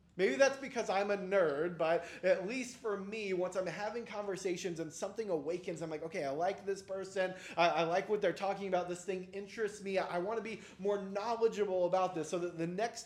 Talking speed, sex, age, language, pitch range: 220 wpm, male, 30-49, English, 170-210 Hz